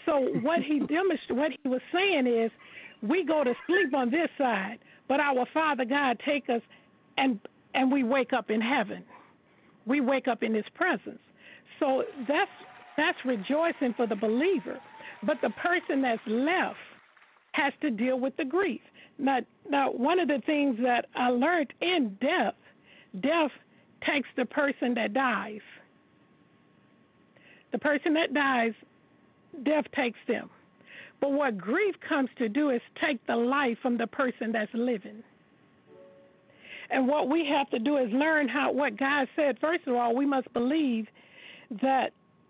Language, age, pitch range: English, 50-69, 245-300 Hz